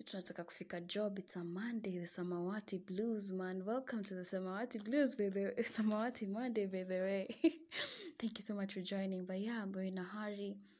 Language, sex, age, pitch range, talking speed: English, female, 20-39, 180-205 Hz, 160 wpm